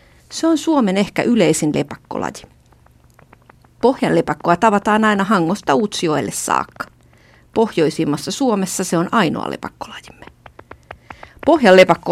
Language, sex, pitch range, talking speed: Finnish, female, 170-240 Hz, 95 wpm